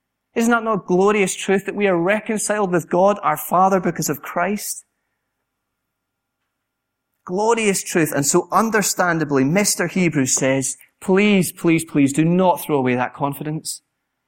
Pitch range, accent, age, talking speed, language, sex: 150-195 Hz, British, 30-49, 140 wpm, English, male